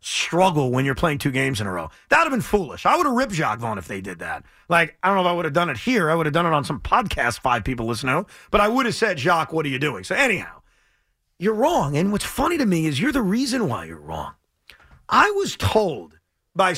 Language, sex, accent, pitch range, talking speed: English, male, American, 165-230 Hz, 280 wpm